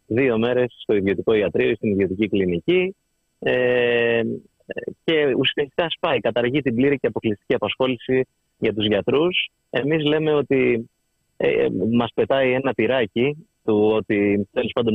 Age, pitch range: 30-49, 110-145 Hz